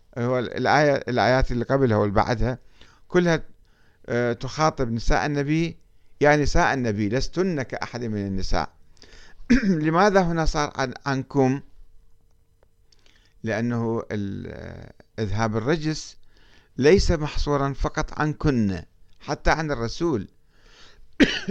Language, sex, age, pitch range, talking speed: Arabic, male, 50-69, 100-145 Hz, 95 wpm